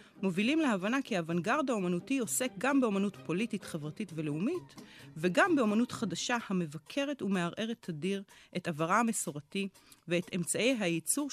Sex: female